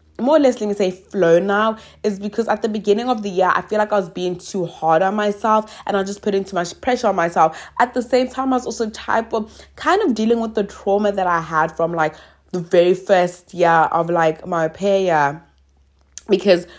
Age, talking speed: 20-39, 235 wpm